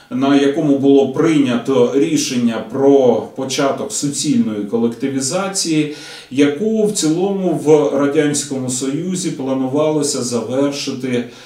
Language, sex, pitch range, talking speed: Russian, male, 115-160 Hz, 90 wpm